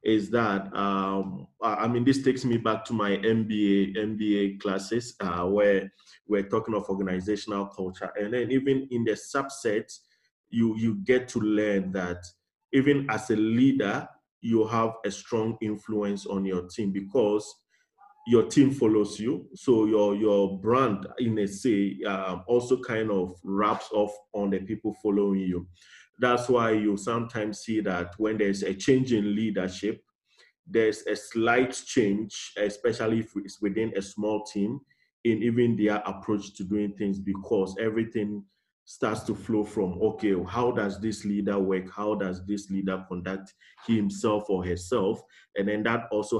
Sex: male